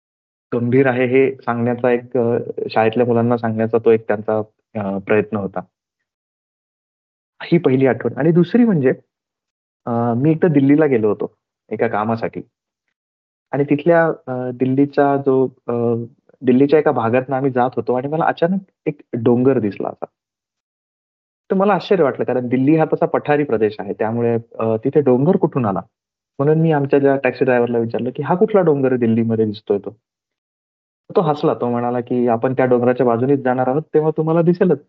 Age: 30-49